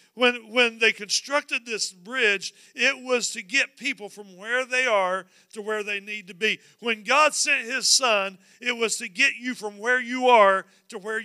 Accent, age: American, 40-59